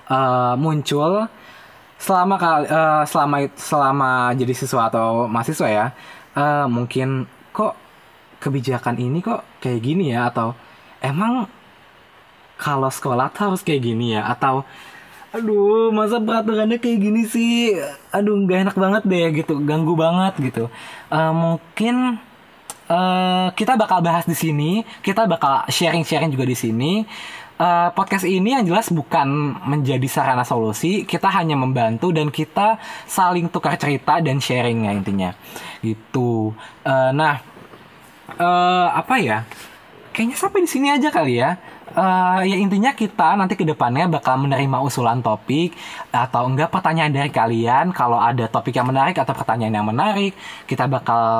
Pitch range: 125-190 Hz